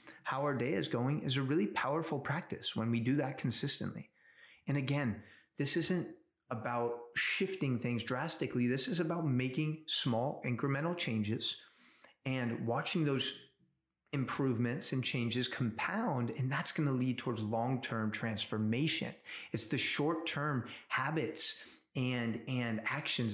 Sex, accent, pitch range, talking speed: male, American, 115-155 Hz, 130 wpm